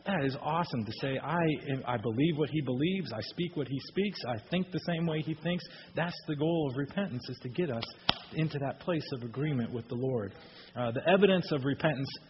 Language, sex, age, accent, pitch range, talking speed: English, male, 40-59, American, 130-165 Hz, 220 wpm